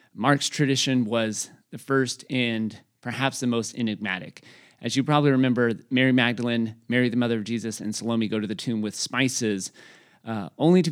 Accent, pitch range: American, 110-135 Hz